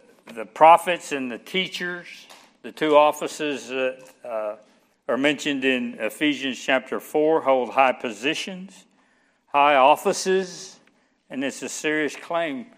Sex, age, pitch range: male, 60-79, 130-185 Hz